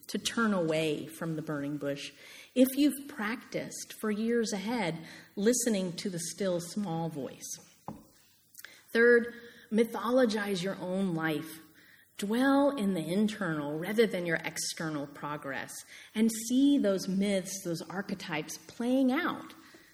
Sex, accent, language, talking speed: female, American, English, 125 wpm